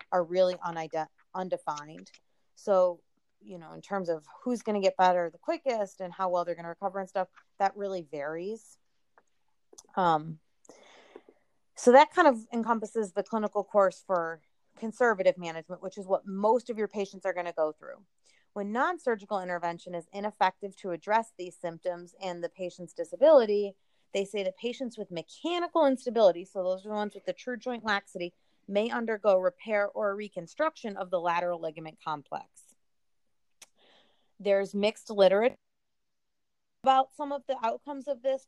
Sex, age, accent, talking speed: female, 30-49, American, 160 wpm